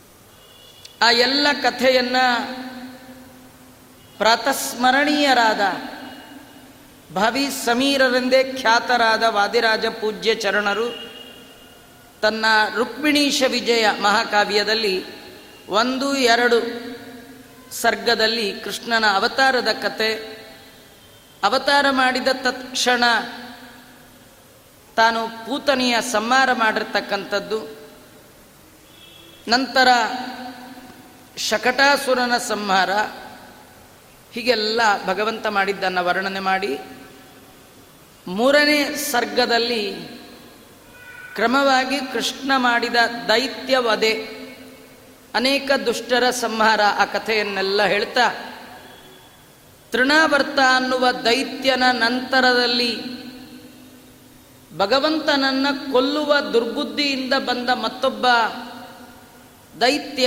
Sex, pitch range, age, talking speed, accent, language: female, 220-260 Hz, 30-49, 50 wpm, native, Kannada